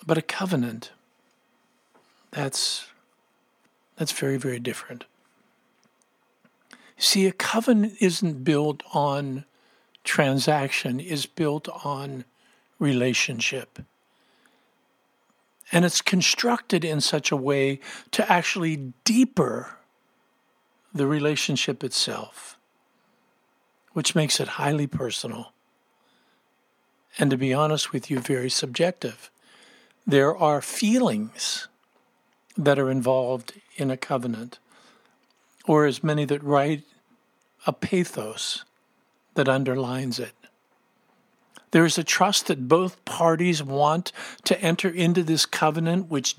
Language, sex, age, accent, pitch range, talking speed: English, male, 50-69, American, 140-180 Hz, 100 wpm